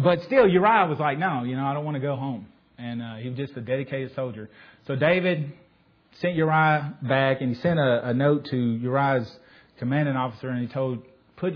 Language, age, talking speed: English, 30-49, 215 wpm